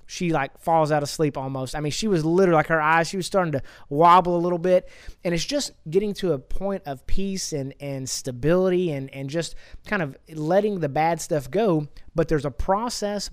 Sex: male